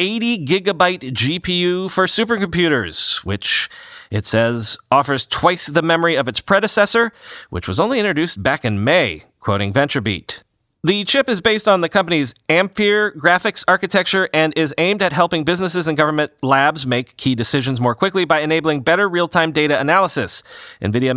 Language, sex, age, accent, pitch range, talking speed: English, male, 30-49, American, 135-190 Hz, 155 wpm